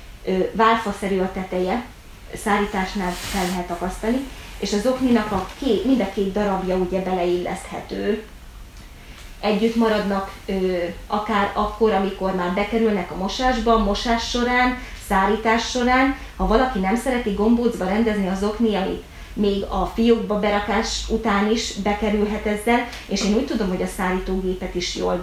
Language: Hungarian